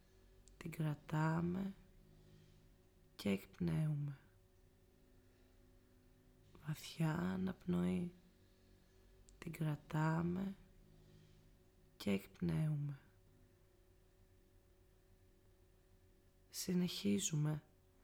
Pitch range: 95-155 Hz